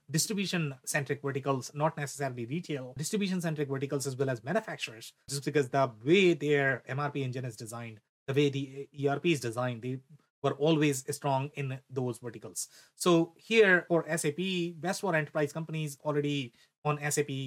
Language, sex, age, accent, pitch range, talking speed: English, male, 30-49, Indian, 130-160 Hz, 150 wpm